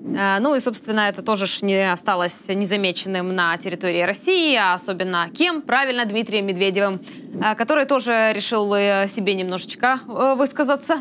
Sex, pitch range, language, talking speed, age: female, 195-260 Hz, Ukrainian, 130 wpm, 20-39